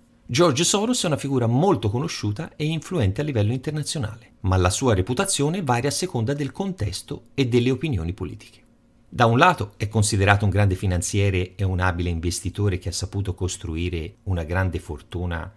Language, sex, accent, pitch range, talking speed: Italian, male, native, 95-125 Hz, 170 wpm